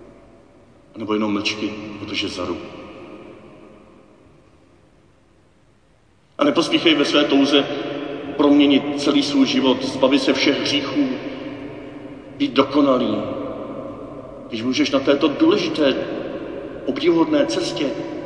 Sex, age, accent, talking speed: male, 50-69, native, 85 wpm